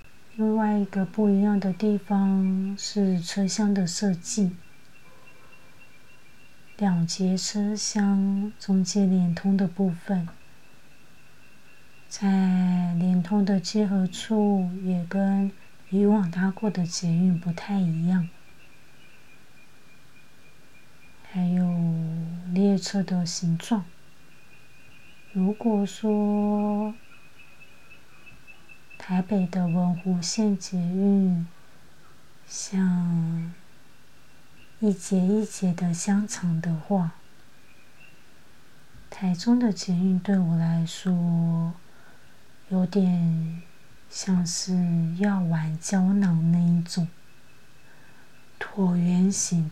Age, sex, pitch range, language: 30-49, female, 170-195 Hz, Chinese